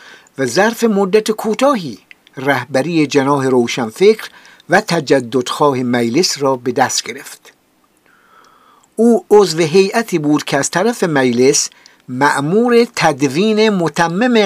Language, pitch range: Persian, 130-190 Hz